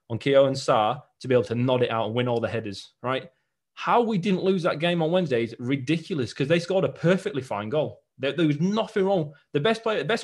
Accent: British